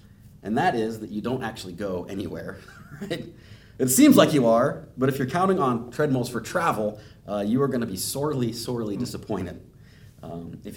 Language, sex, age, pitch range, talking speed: English, male, 30-49, 105-125 Hz, 190 wpm